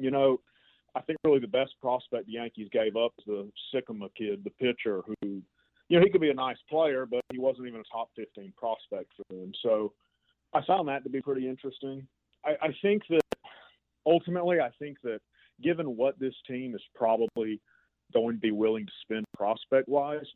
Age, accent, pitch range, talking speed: 40-59, American, 115-140 Hz, 195 wpm